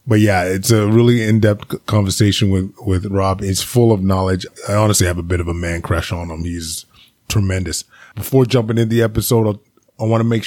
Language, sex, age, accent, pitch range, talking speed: English, male, 20-39, American, 105-120 Hz, 210 wpm